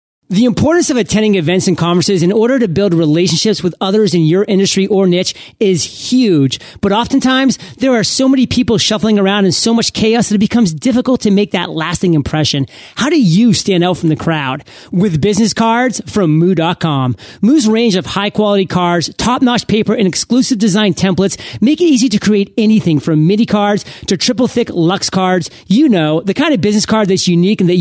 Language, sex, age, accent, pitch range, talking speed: English, male, 30-49, American, 170-220 Hz, 195 wpm